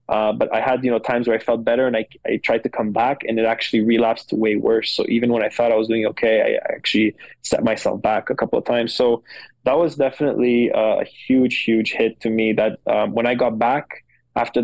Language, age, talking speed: English, 20-39, 245 wpm